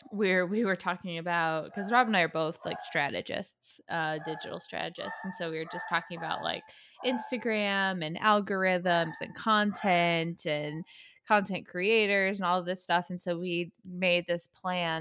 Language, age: English, 20-39